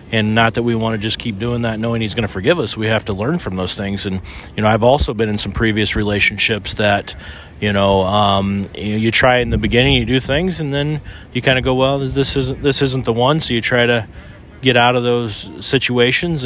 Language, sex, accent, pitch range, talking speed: English, male, American, 105-125 Hz, 250 wpm